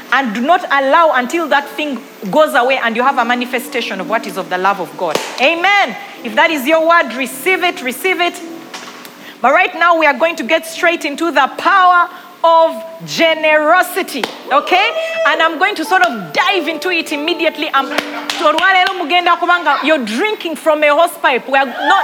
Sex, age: female, 40-59